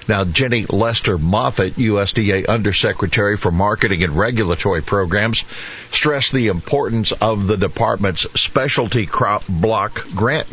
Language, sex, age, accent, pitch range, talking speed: English, male, 60-79, American, 90-120 Hz, 120 wpm